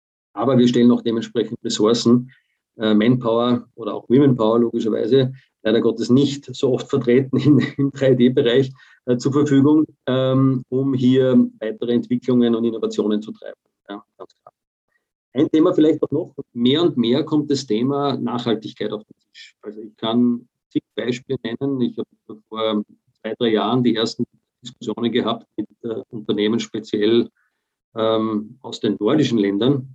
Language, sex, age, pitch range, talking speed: German, male, 50-69, 110-130 Hz, 140 wpm